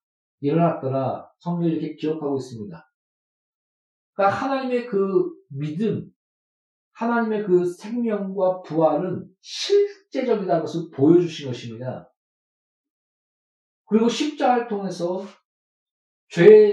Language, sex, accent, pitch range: Korean, male, native, 160-235 Hz